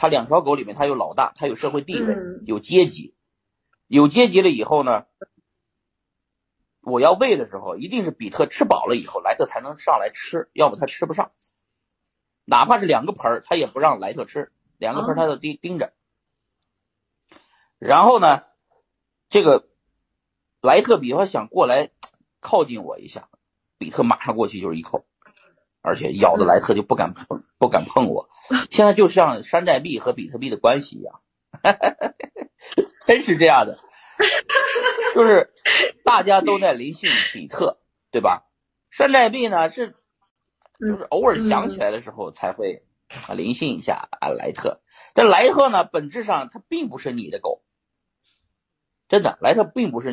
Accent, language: native, Chinese